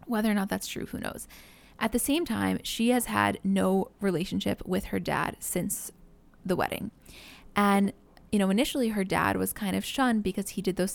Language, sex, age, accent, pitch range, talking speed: English, female, 10-29, American, 180-205 Hz, 195 wpm